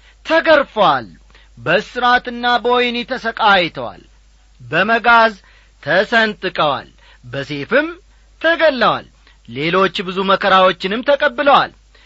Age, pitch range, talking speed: 40-59, 145-240 Hz, 60 wpm